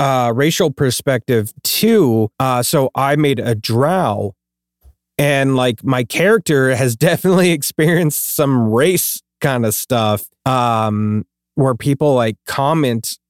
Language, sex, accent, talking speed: English, male, American, 115 wpm